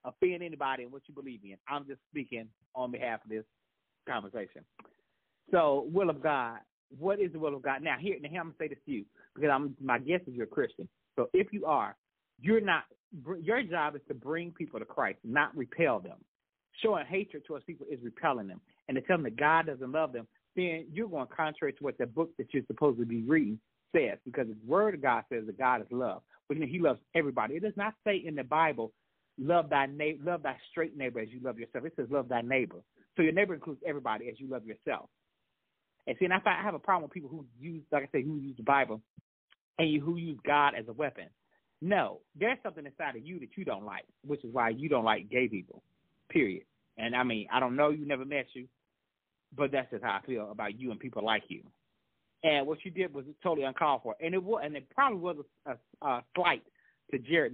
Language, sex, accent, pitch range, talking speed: English, male, American, 130-170 Hz, 240 wpm